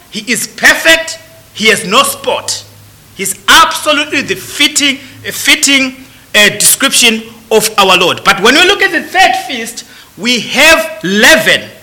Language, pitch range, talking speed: English, 240-335 Hz, 140 wpm